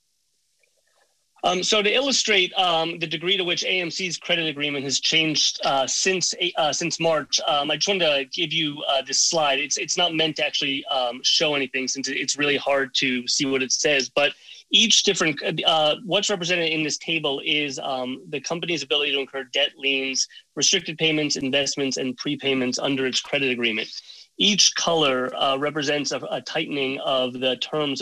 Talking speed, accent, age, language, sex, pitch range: 180 wpm, American, 30-49, English, male, 135-165 Hz